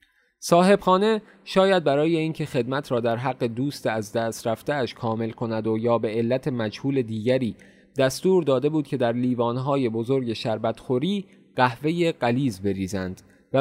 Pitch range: 120-150 Hz